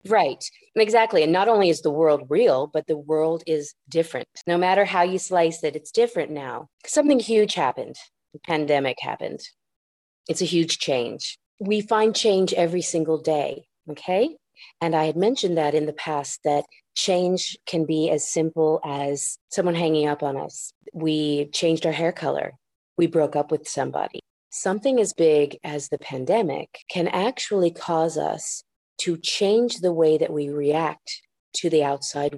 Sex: female